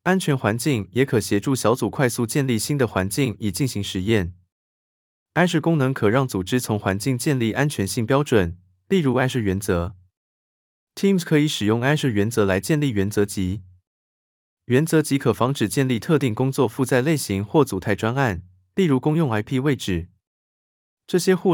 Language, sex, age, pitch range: Chinese, male, 20-39, 95-140 Hz